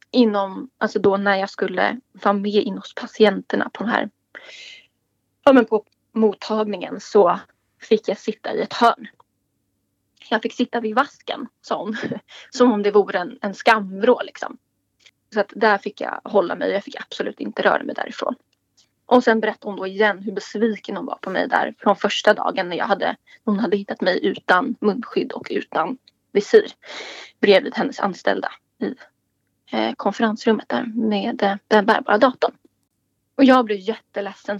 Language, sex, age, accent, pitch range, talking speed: Swedish, female, 20-39, native, 205-245 Hz, 165 wpm